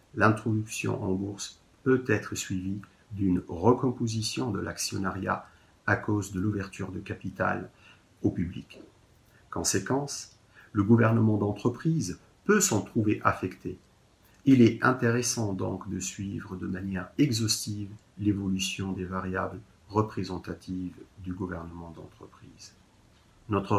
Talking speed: 110 wpm